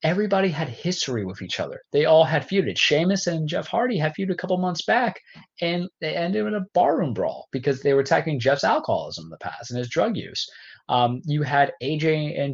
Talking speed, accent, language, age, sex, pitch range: 215 wpm, American, English, 20-39, male, 115-165 Hz